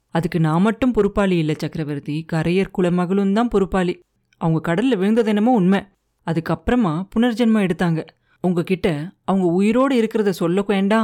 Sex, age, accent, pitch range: female, 30-49, native, 165-220 Hz